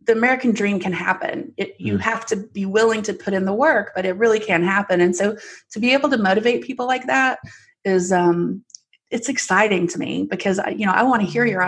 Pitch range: 180-210 Hz